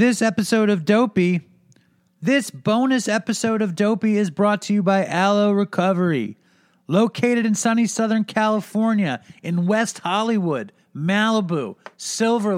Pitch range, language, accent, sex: 175-215 Hz, English, American, male